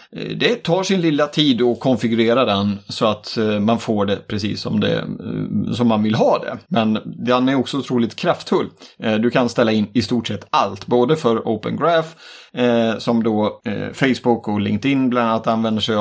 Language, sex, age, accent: Swedish, male, 30-49, native